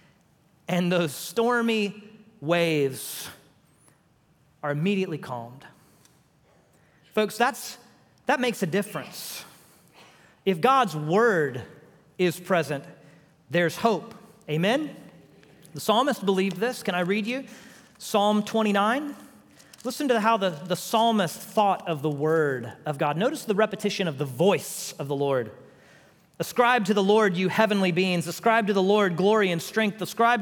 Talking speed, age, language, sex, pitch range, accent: 130 wpm, 40-59, English, male, 190-275 Hz, American